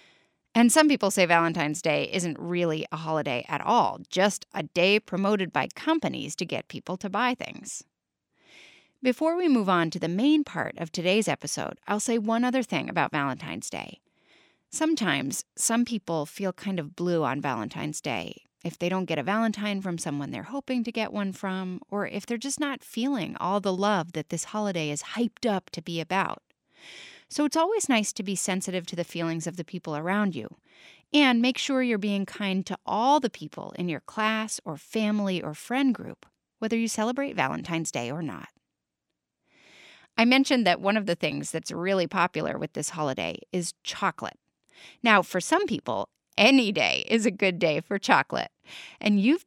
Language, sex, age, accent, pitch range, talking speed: English, female, 30-49, American, 170-235 Hz, 185 wpm